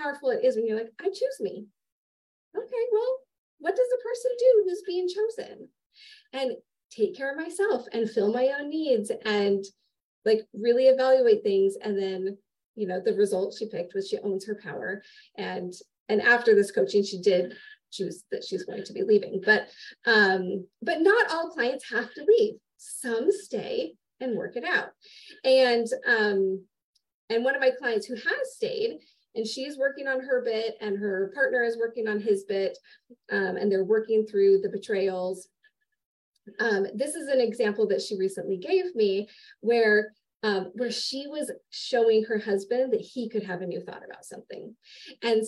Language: English